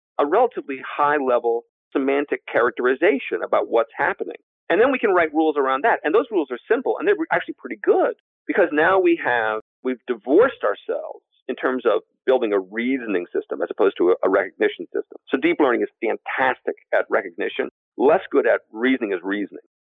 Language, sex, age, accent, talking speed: English, male, 50-69, American, 175 wpm